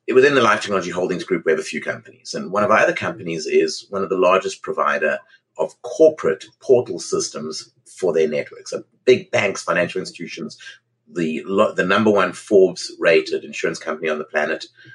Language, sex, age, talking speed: English, male, 30-49, 175 wpm